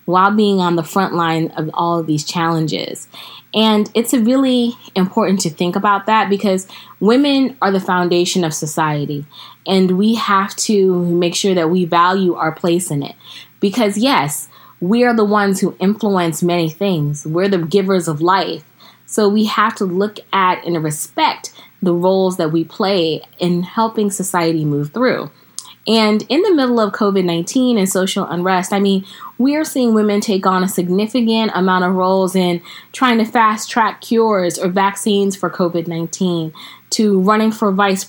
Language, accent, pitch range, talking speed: English, American, 180-225 Hz, 170 wpm